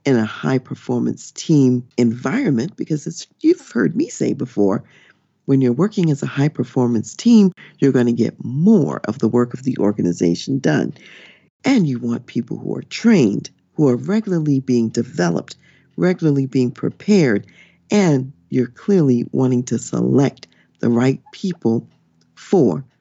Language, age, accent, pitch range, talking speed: English, 50-69, American, 115-175 Hz, 145 wpm